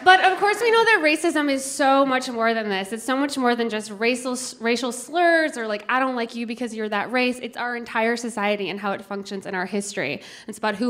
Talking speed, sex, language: 255 wpm, female, English